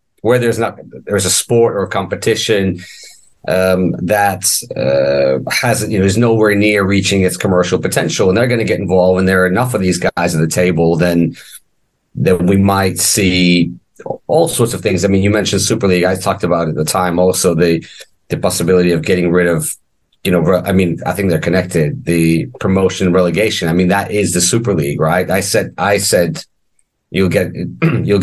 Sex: male